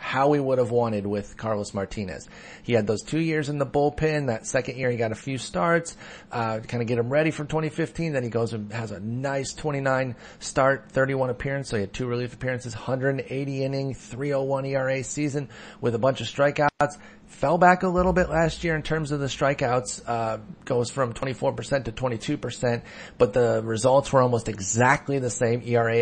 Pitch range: 115-145 Hz